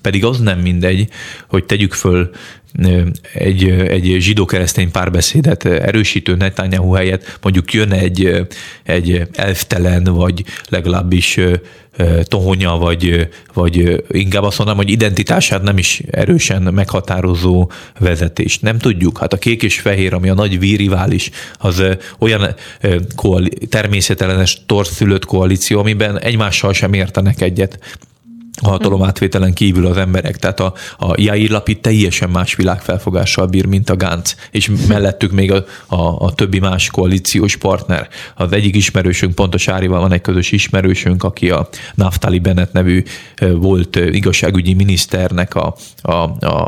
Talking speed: 130 wpm